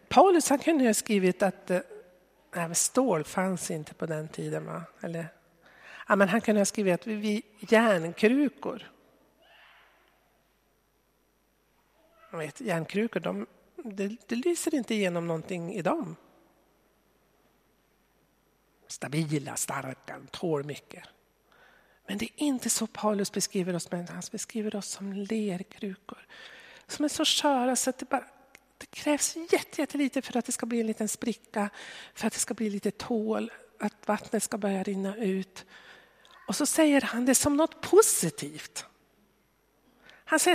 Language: Swedish